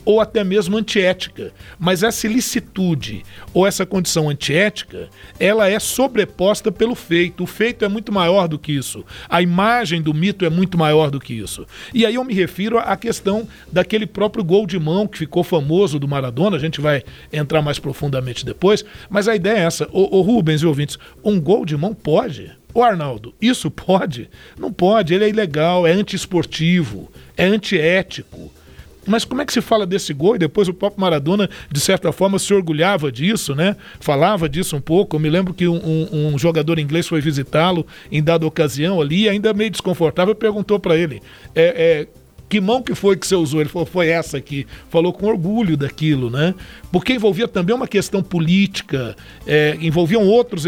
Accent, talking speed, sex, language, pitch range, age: Brazilian, 190 wpm, male, Portuguese, 155-205 Hz, 60-79